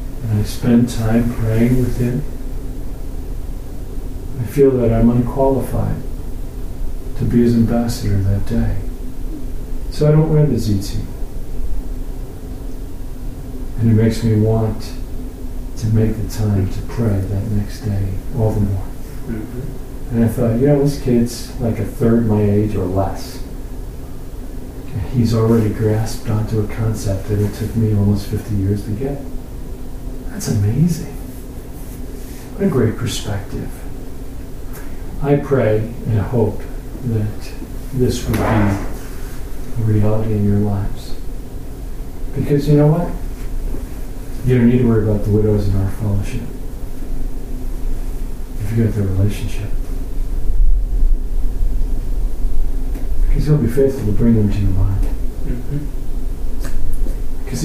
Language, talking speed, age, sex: English, 125 wpm, 40-59, male